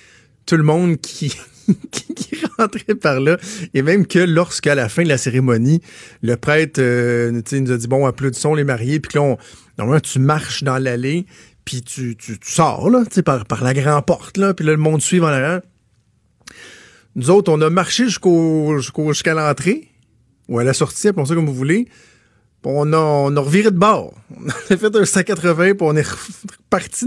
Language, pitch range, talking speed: French, 125-160 Hz, 190 wpm